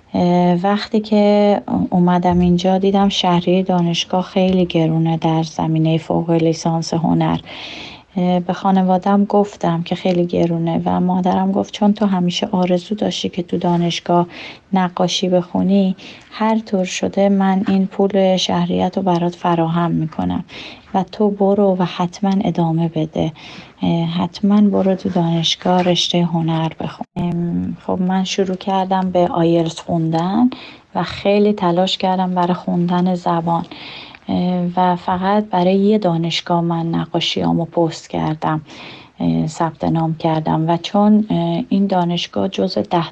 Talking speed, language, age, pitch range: 125 wpm, Persian, 30-49, 165-190 Hz